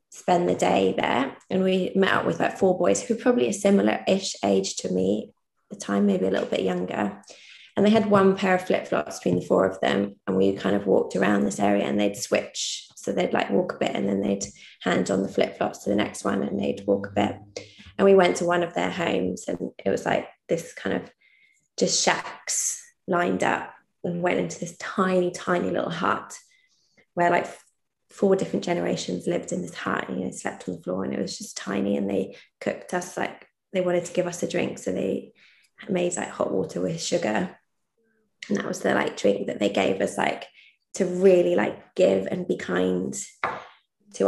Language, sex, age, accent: English, female, 20-39, British